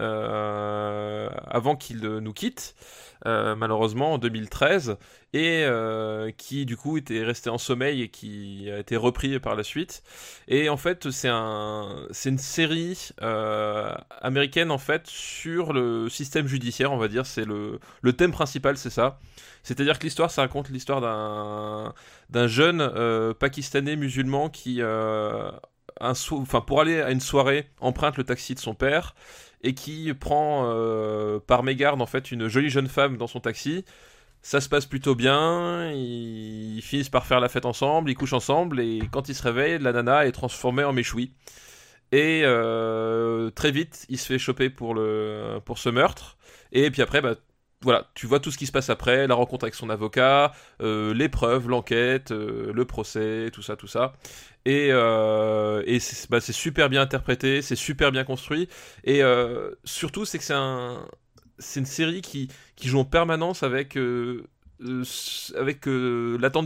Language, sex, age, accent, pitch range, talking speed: French, male, 20-39, French, 115-145 Hz, 175 wpm